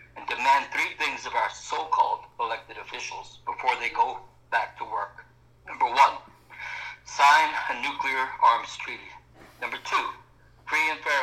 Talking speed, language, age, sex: 145 wpm, English, 60-79, male